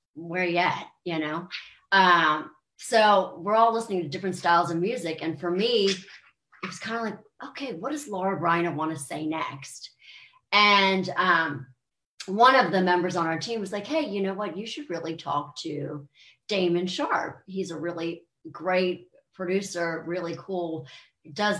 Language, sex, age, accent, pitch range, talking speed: English, female, 40-59, American, 165-200 Hz, 170 wpm